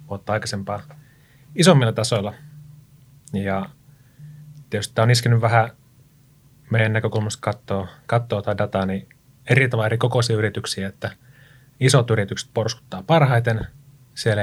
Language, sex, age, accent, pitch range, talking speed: Finnish, male, 30-49, native, 105-135 Hz, 110 wpm